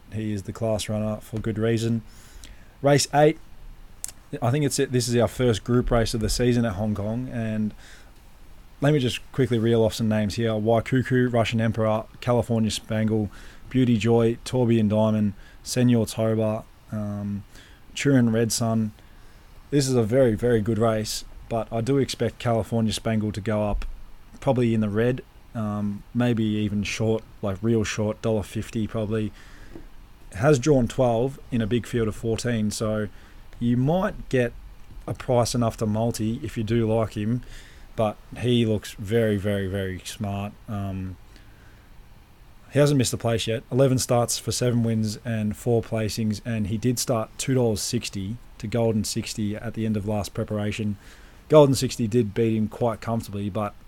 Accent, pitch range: Australian, 105-120 Hz